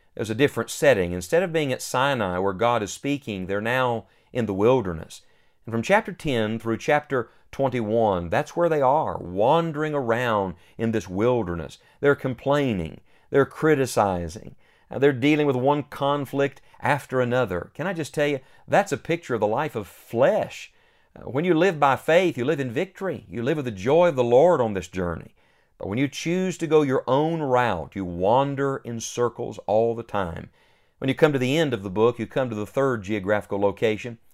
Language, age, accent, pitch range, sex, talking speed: English, 50-69, American, 105-140 Hz, male, 190 wpm